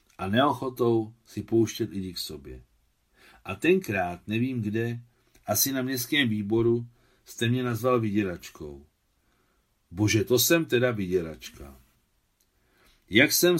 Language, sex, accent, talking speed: Czech, male, native, 115 wpm